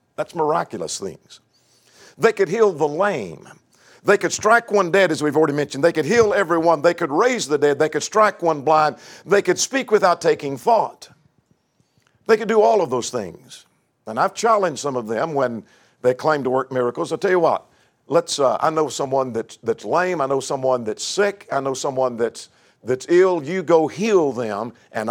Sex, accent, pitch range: male, American, 135-195 Hz